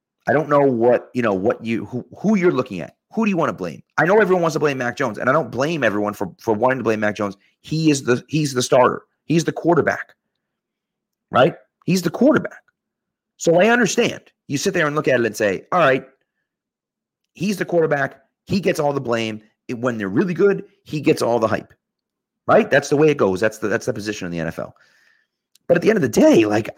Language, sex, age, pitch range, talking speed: English, male, 30-49, 125-185 Hz, 235 wpm